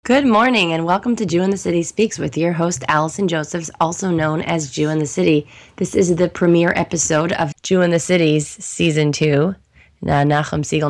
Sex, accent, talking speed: female, American, 200 wpm